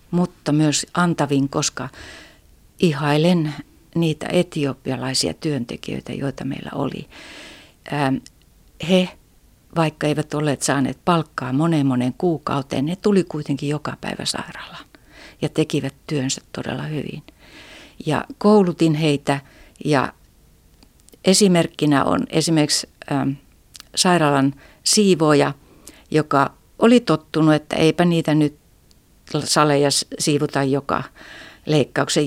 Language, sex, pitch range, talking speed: Finnish, female, 145-175 Hz, 100 wpm